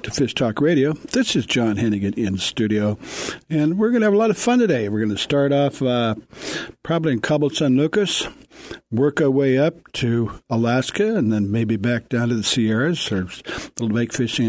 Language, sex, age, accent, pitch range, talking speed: English, male, 60-79, American, 110-145 Hz, 205 wpm